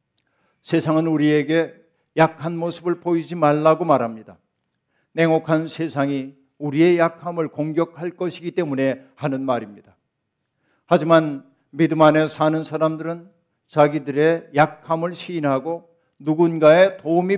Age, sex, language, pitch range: 60-79, male, Korean, 150-175 Hz